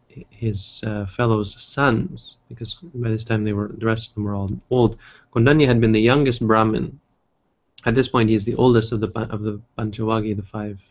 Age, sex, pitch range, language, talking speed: 20-39, male, 105-120 Hz, English, 195 wpm